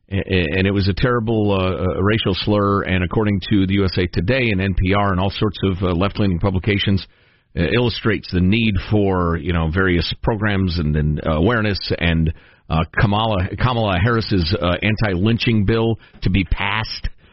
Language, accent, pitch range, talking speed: English, American, 95-120 Hz, 165 wpm